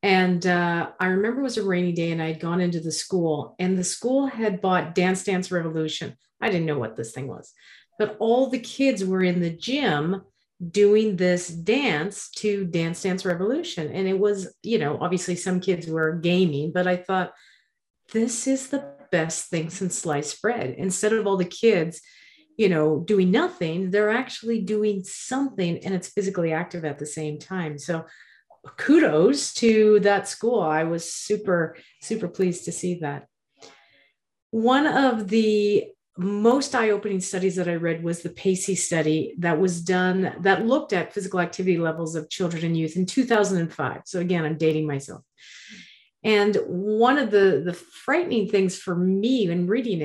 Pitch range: 170-215 Hz